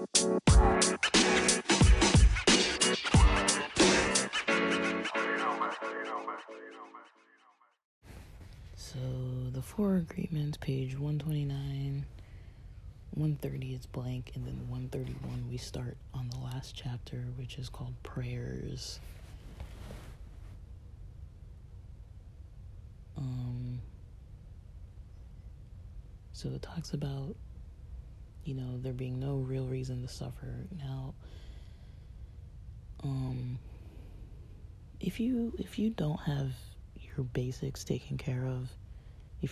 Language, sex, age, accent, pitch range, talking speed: English, male, 30-49, American, 95-135 Hz, 75 wpm